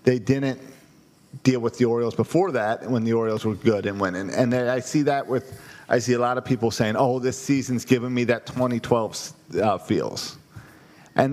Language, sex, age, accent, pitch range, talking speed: English, male, 40-59, American, 110-130 Hz, 200 wpm